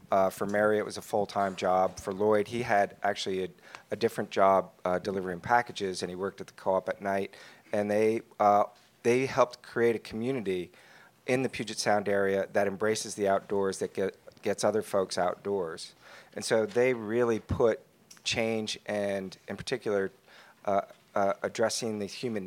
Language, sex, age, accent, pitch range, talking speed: English, male, 40-59, American, 100-120 Hz, 175 wpm